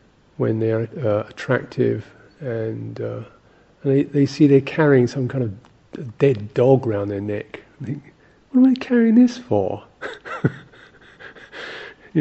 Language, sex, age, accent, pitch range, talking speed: English, male, 50-69, British, 115-140 Hz, 145 wpm